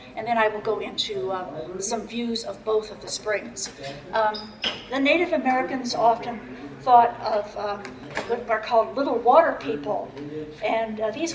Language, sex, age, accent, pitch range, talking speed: English, female, 60-79, American, 210-260 Hz, 165 wpm